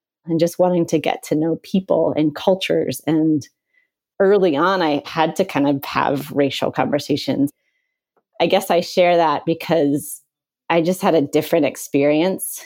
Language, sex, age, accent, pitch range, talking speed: English, female, 30-49, American, 150-175 Hz, 155 wpm